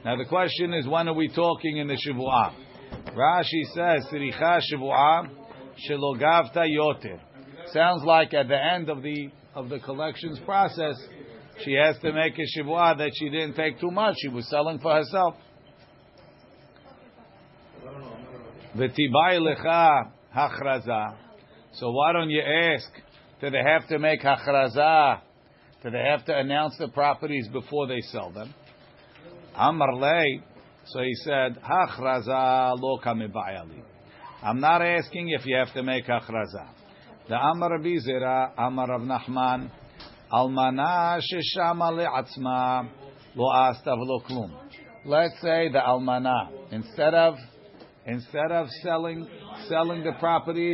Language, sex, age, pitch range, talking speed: English, male, 50-69, 130-165 Hz, 130 wpm